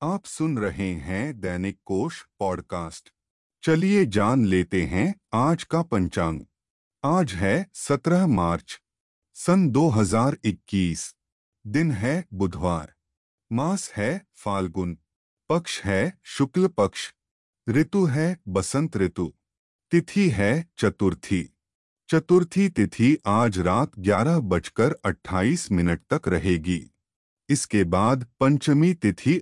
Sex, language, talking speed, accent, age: male, Hindi, 105 wpm, native, 30-49